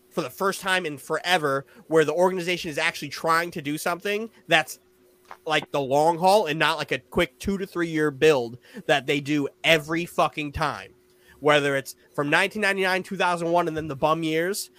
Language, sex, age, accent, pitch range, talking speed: English, male, 20-39, American, 135-175 Hz, 185 wpm